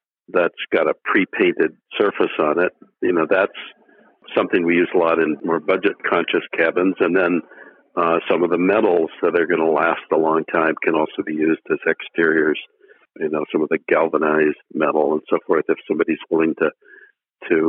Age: 60-79